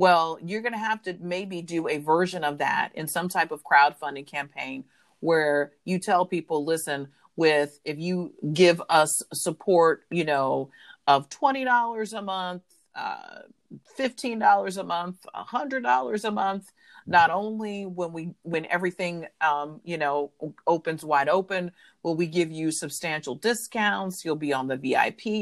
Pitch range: 150-185 Hz